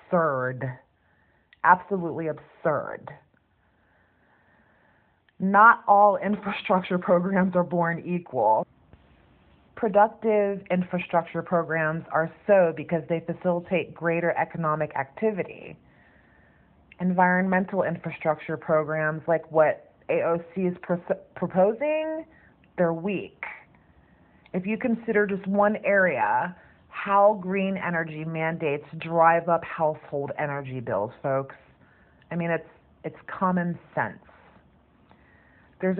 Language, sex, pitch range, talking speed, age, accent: English, female, 160-195 Hz, 90 wpm, 30-49, American